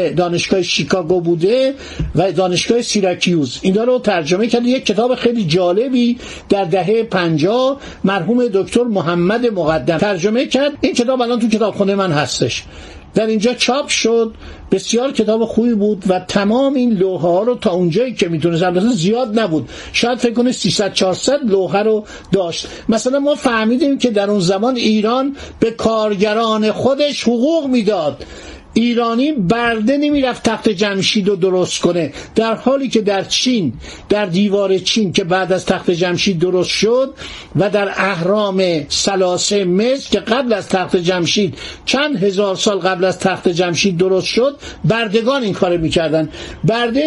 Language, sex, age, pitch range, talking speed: Persian, male, 50-69, 185-235 Hz, 150 wpm